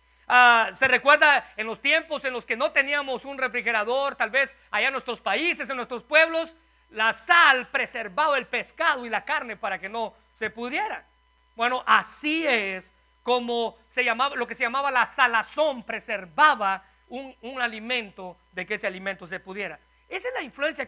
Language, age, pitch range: Spanish, 50-69, 215-280 Hz